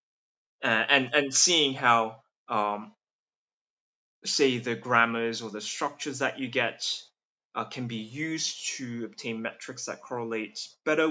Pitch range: 115-145 Hz